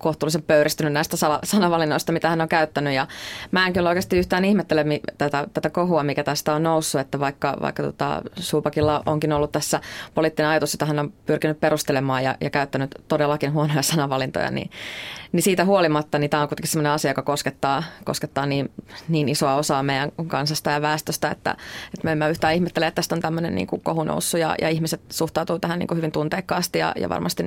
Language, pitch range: Finnish, 145-165 Hz